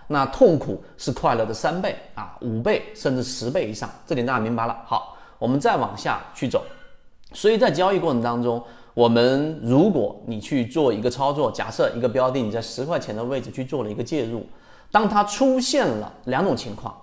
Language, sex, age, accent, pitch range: Chinese, male, 30-49, native, 115-190 Hz